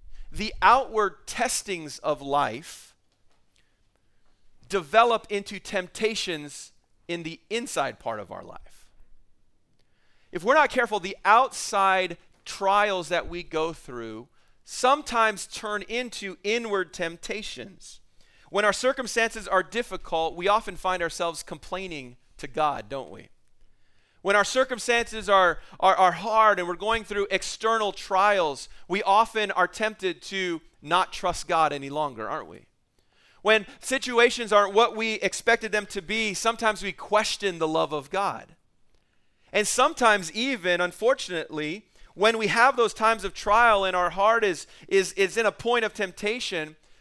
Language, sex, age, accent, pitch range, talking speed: English, male, 40-59, American, 170-220 Hz, 140 wpm